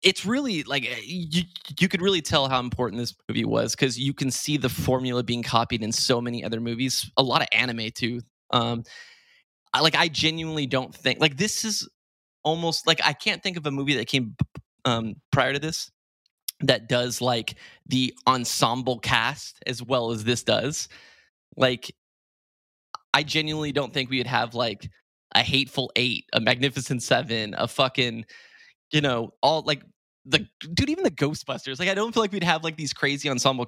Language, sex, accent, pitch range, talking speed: English, male, American, 120-155 Hz, 185 wpm